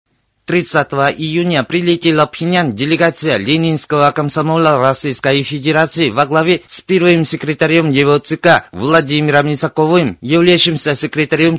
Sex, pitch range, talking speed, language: male, 140-165 Hz, 105 wpm, Russian